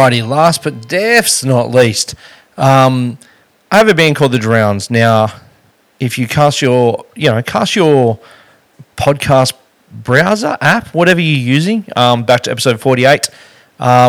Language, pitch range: English, 120-140 Hz